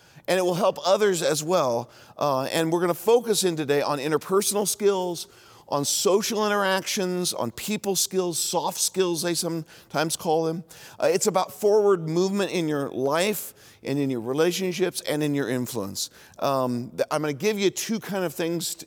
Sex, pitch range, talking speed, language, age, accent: male, 145-185 Hz, 170 wpm, English, 40-59, American